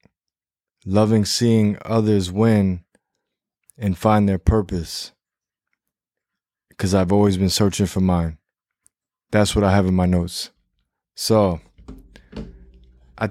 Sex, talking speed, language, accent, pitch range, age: male, 110 wpm, English, American, 95-105 Hz, 20-39